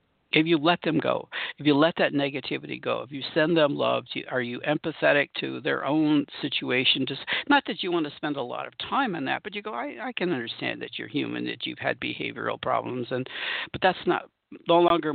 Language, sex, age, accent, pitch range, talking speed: English, male, 60-79, American, 135-175 Hz, 225 wpm